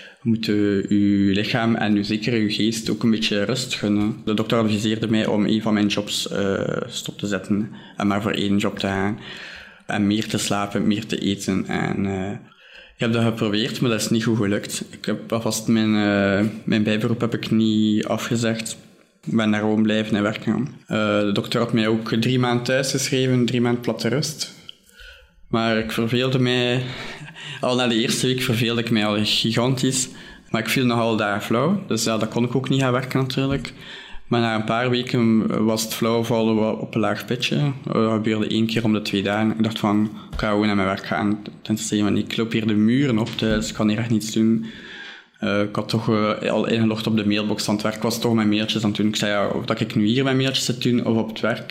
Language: Dutch